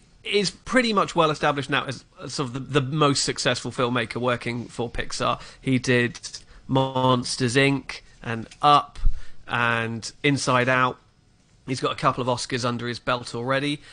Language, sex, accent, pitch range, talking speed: English, male, British, 125-150 Hz, 155 wpm